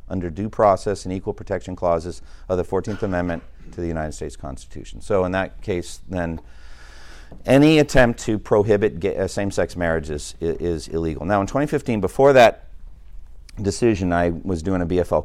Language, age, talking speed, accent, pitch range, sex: English, 50-69, 160 wpm, American, 75-100 Hz, male